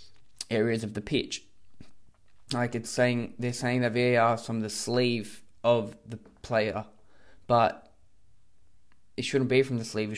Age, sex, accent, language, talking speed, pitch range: 20-39, male, Australian, English, 155 wpm, 105-125 Hz